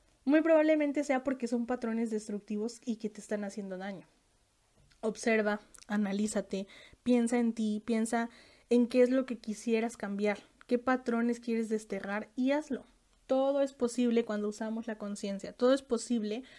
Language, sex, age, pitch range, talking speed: Spanish, female, 10-29, 215-250 Hz, 150 wpm